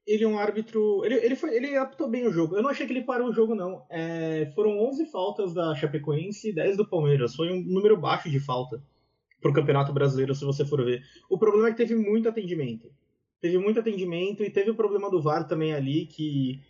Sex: male